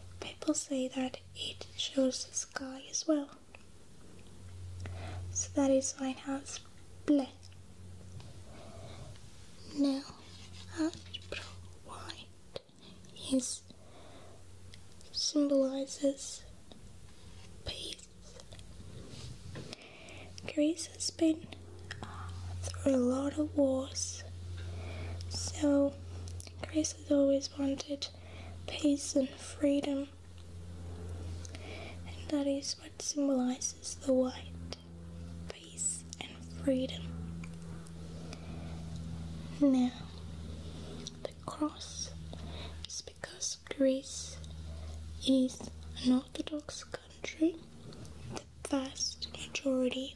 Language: English